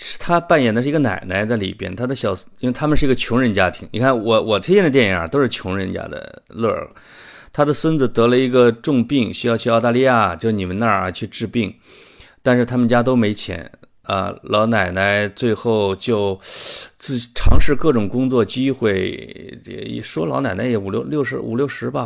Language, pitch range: Chinese, 95-125 Hz